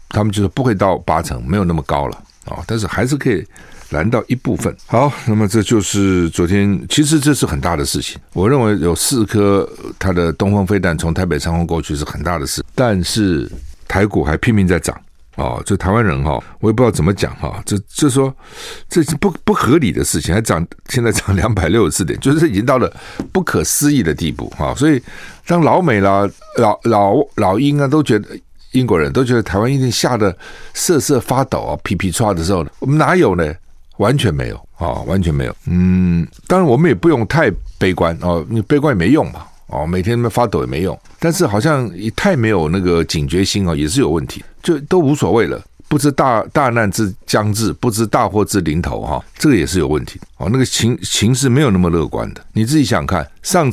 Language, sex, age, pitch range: Chinese, male, 60-79, 85-125 Hz